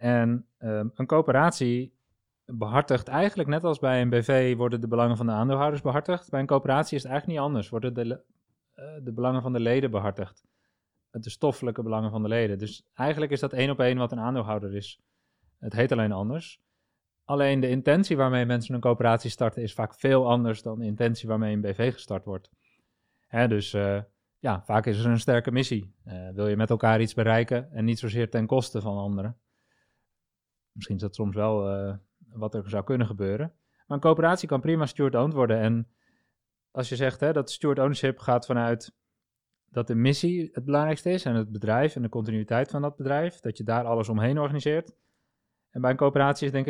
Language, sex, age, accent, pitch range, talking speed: Dutch, male, 30-49, Dutch, 110-135 Hz, 195 wpm